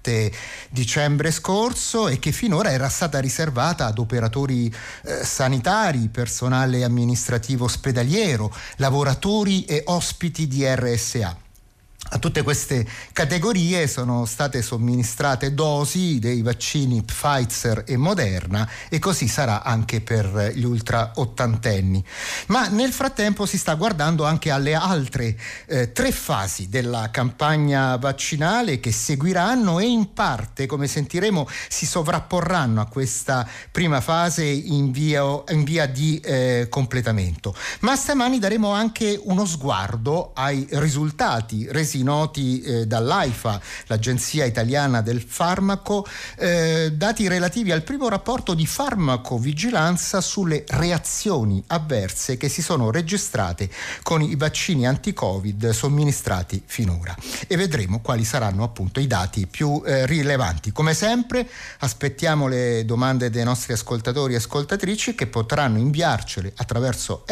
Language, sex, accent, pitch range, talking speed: Italian, male, native, 120-170 Hz, 120 wpm